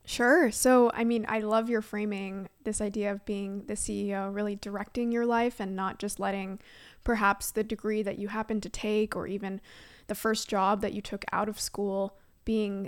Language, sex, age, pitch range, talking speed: English, female, 20-39, 200-230 Hz, 195 wpm